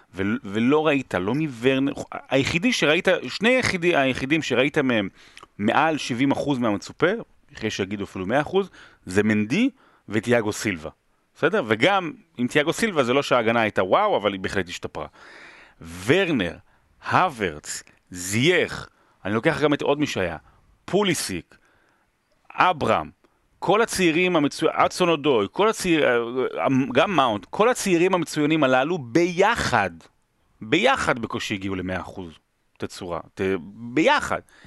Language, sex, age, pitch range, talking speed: Hebrew, male, 30-49, 110-170 Hz, 125 wpm